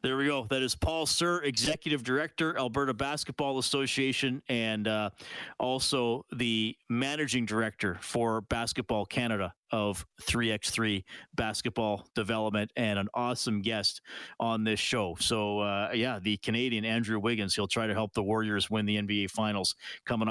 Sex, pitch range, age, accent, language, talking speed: male, 115-165 Hz, 40-59, American, English, 155 wpm